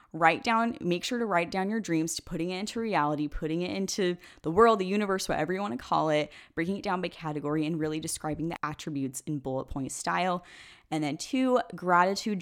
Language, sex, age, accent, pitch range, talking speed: English, female, 10-29, American, 150-190 Hz, 220 wpm